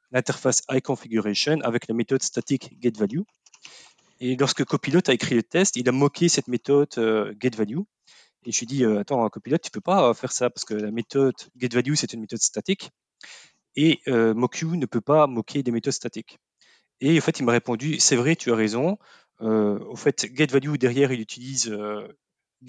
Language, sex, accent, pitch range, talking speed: French, male, French, 115-145 Hz, 190 wpm